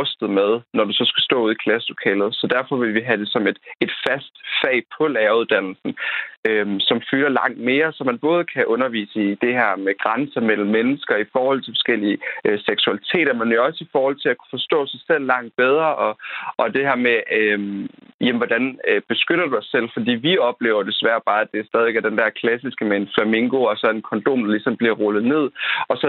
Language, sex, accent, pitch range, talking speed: Danish, male, native, 110-140 Hz, 220 wpm